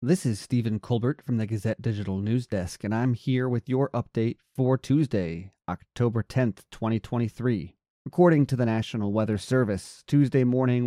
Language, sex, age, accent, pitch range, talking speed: English, male, 30-49, American, 105-125 Hz, 160 wpm